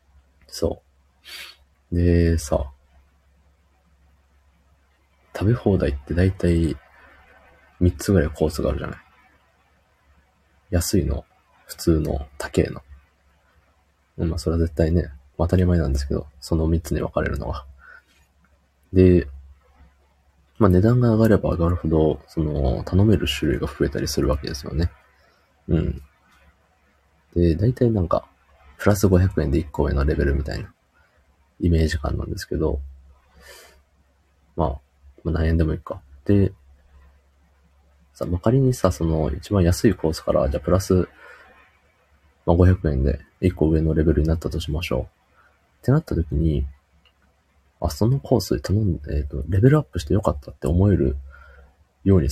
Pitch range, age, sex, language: 70-85 Hz, 30-49, male, Japanese